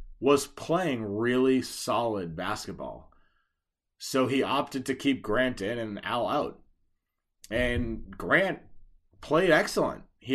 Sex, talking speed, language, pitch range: male, 115 wpm, English, 110-140 Hz